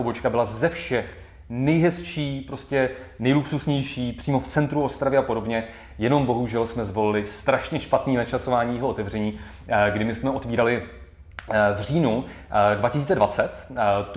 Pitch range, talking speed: 115-135 Hz, 120 wpm